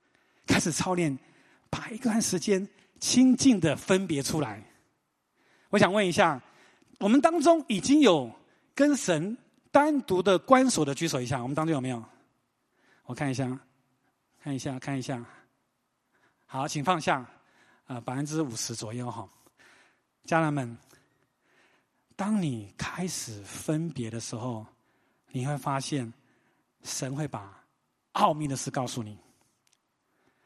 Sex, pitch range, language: male, 135-220 Hz, English